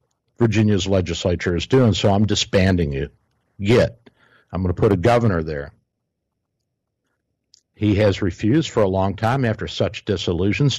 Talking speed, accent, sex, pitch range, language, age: 145 wpm, American, male, 95-120 Hz, English, 60-79